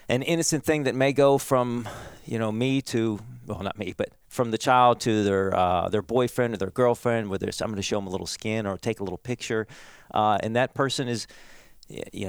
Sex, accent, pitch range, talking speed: male, American, 95-120 Hz, 220 wpm